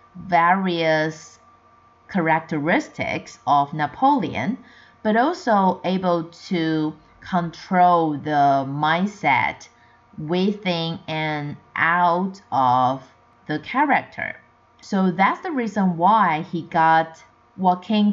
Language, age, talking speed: English, 30-49, 85 wpm